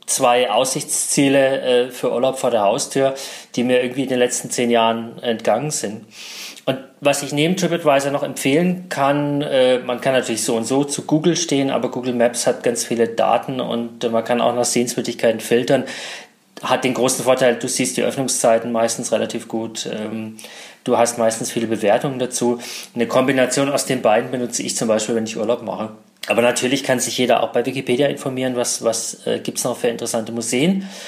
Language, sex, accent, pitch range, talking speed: German, male, German, 115-135 Hz, 185 wpm